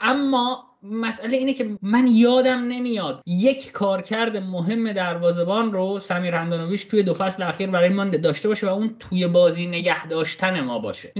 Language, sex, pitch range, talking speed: Persian, male, 180-245 Hz, 165 wpm